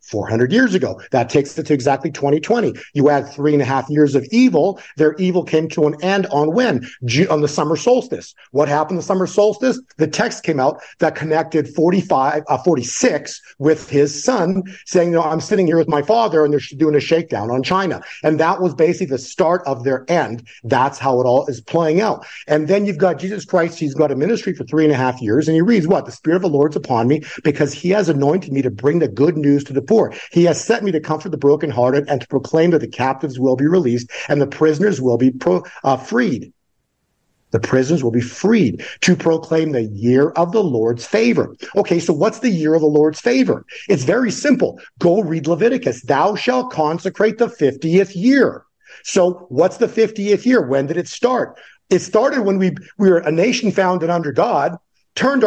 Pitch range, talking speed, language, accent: 145-195 Hz, 220 wpm, English, American